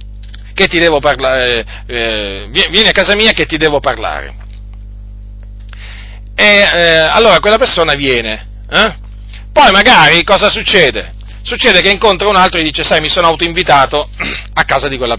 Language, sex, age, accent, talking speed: Italian, male, 40-59, native, 155 wpm